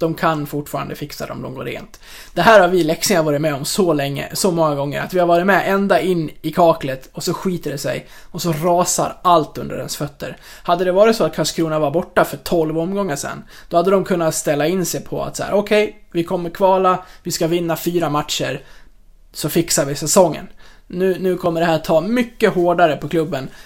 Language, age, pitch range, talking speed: Swedish, 20-39, 155-190 Hz, 230 wpm